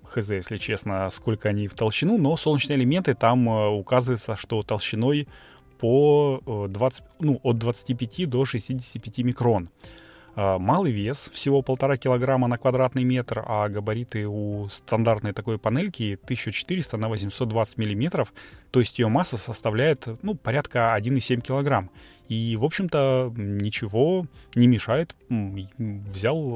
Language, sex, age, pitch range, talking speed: Russian, male, 20-39, 105-130 Hz, 120 wpm